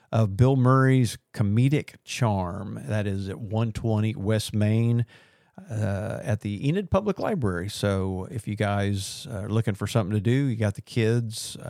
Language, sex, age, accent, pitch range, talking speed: English, male, 50-69, American, 105-125 Hz, 160 wpm